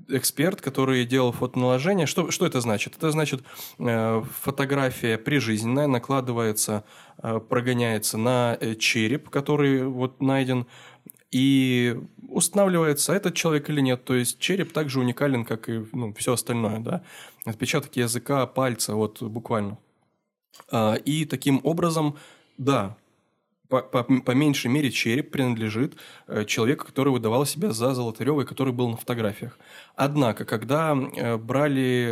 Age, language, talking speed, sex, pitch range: 20-39, Russian, 125 wpm, male, 115-140 Hz